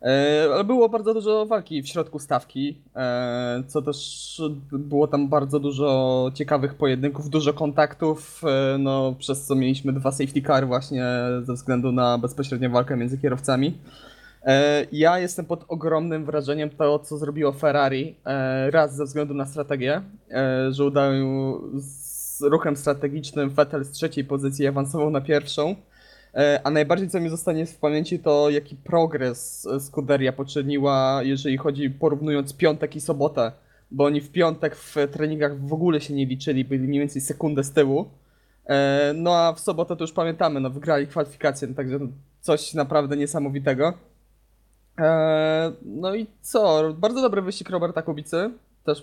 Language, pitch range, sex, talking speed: Polish, 135-155 Hz, male, 145 wpm